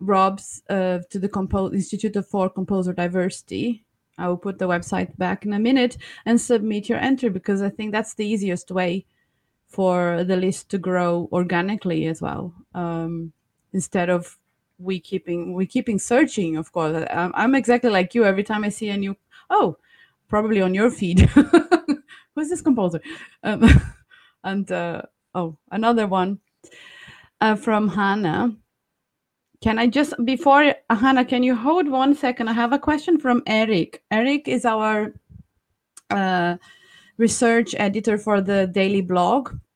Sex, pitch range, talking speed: female, 185-250 Hz, 150 wpm